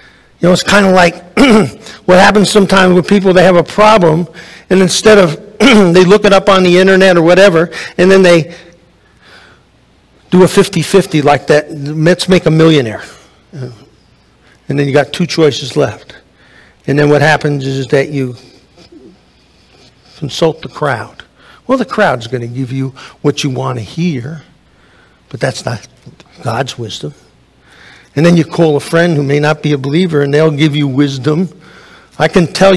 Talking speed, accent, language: 170 wpm, American, English